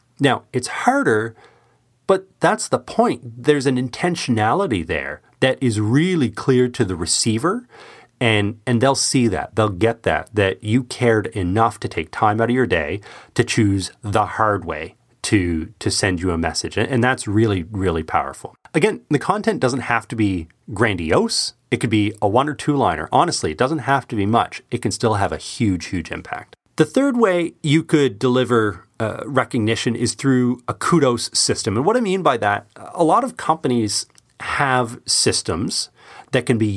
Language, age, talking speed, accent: English, 30-49, 180 wpm, American